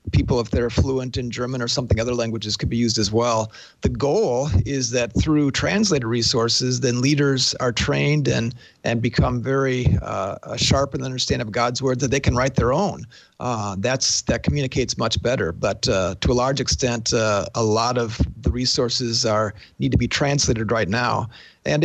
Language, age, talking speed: English, 40-59, 190 wpm